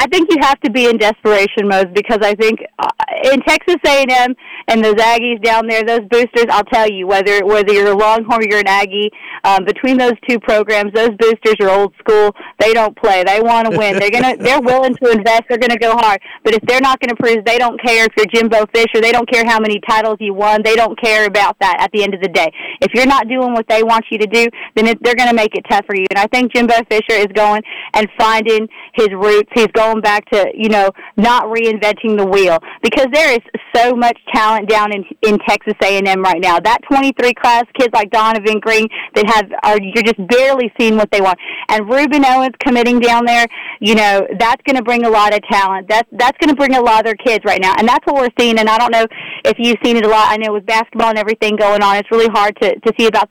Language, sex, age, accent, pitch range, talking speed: English, female, 30-49, American, 210-245 Hz, 255 wpm